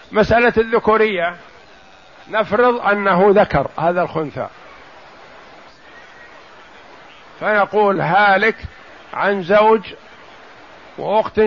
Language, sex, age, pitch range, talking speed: Arabic, male, 50-69, 190-230 Hz, 65 wpm